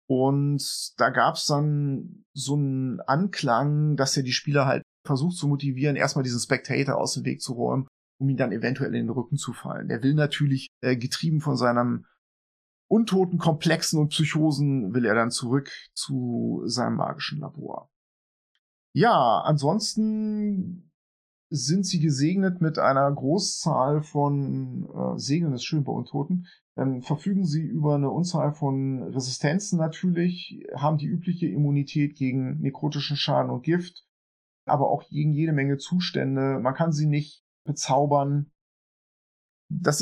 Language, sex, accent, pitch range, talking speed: German, male, German, 135-165 Hz, 145 wpm